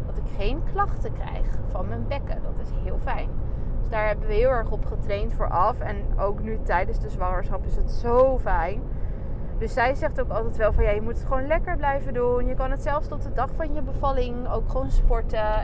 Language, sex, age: Dutch, female, 20-39